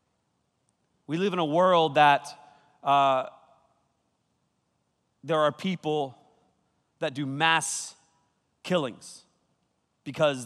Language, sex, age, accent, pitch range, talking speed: English, male, 30-49, American, 150-180 Hz, 85 wpm